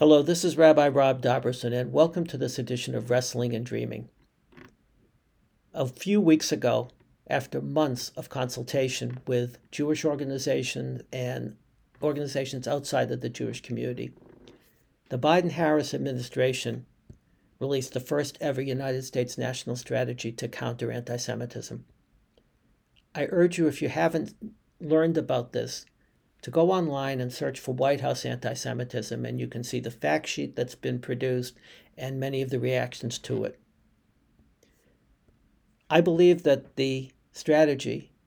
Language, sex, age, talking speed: English, male, 60-79, 135 wpm